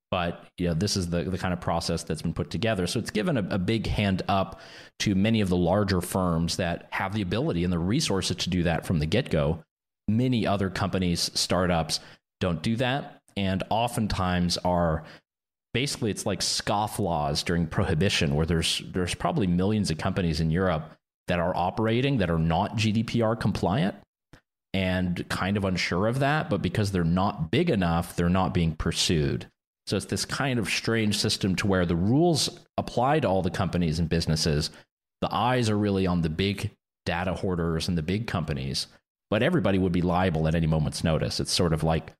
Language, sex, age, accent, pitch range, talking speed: English, male, 30-49, American, 85-100 Hz, 190 wpm